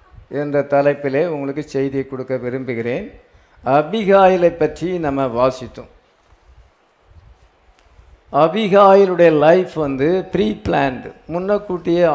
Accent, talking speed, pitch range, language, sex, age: Indian, 75 wpm, 125-195 Hz, English, male, 50-69